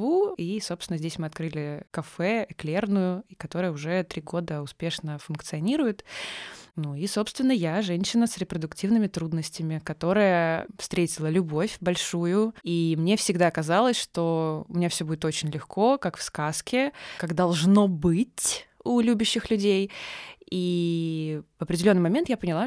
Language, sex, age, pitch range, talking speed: Russian, female, 20-39, 160-195 Hz, 140 wpm